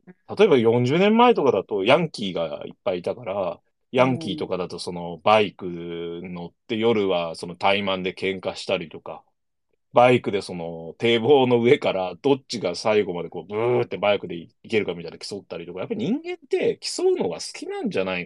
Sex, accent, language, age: male, native, Japanese, 30-49